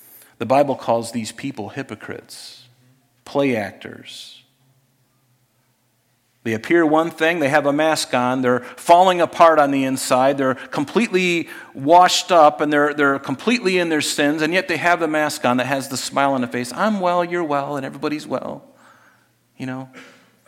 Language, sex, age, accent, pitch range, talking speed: English, male, 40-59, American, 125-165 Hz, 165 wpm